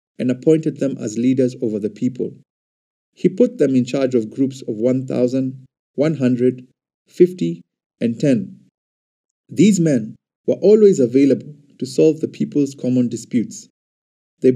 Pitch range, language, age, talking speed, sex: 120-160 Hz, English, 50-69, 130 wpm, male